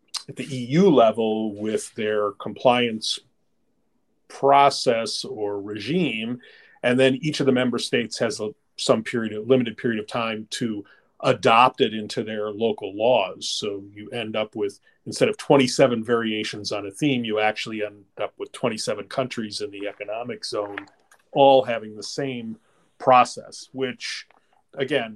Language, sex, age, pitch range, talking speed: English, male, 40-59, 110-140 Hz, 150 wpm